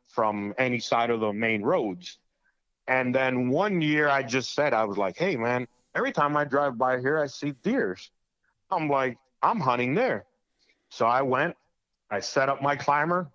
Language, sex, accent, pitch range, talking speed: English, male, American, 115-145 Hz, 185 wpm